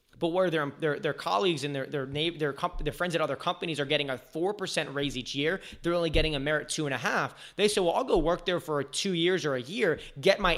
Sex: male